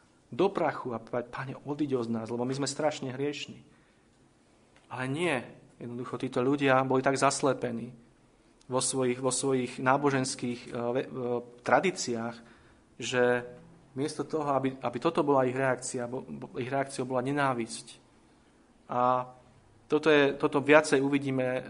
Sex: male